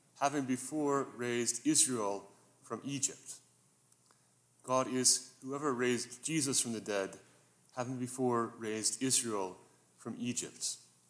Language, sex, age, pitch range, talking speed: English, male, 30-49, 110-140 Hz, 110 wpm